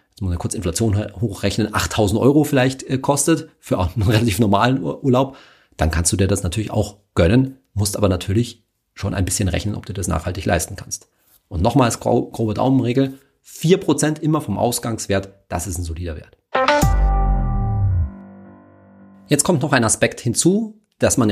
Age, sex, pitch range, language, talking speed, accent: 40-59, male, 95-135 Hz, German, 165 wpm, German